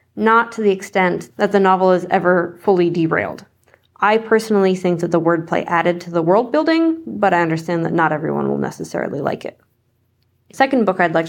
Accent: American